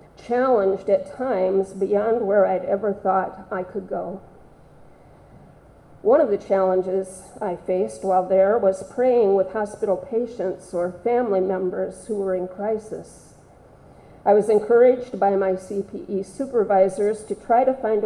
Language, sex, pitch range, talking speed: English, female, 190-215 Hz, 140 wpm